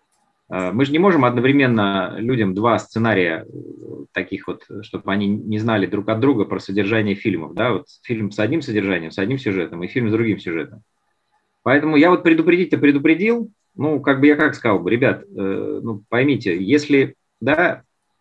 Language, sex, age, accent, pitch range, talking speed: Russian, male, 30-49, native, 105-140 Hz, 170 wpm